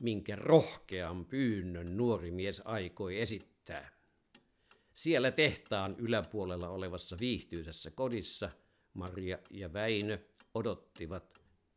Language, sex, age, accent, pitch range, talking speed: Finnish, male, 50-69, native, 85-115 Hz, 85 wpm